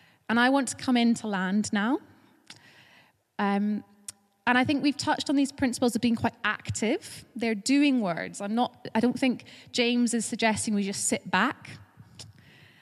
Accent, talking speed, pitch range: British, 165 wpm, 185-235 Hz